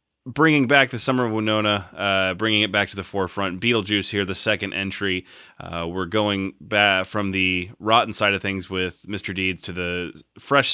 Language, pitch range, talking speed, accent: English, 90-110 Hz, 185 wpm, American